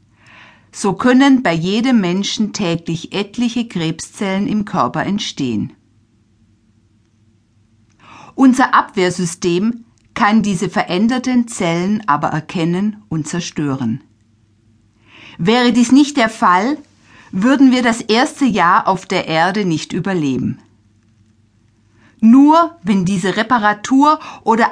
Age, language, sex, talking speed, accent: 50-69, German, female, 100 wpm, German